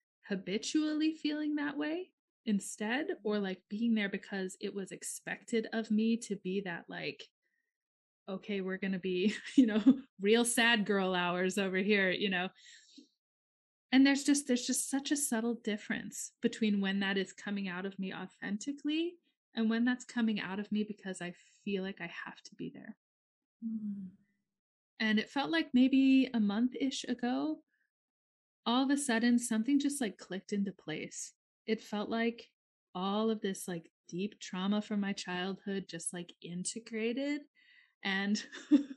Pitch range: 195-260 Hz